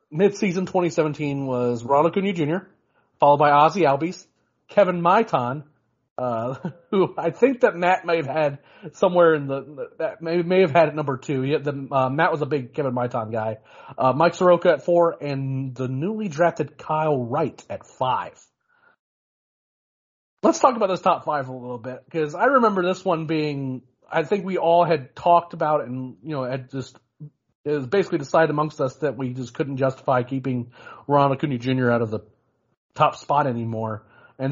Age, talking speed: 30-49, 185 wpm